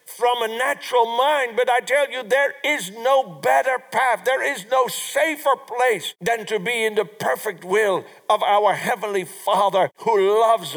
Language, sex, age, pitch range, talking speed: English, male, 60-79, 195-280 Hz, 175 wpm